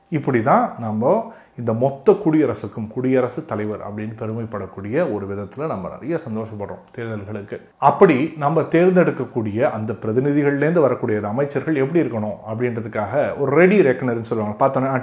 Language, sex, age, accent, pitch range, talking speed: Tamil, male, 30-49, native, 110-165 Hz, 120 wpm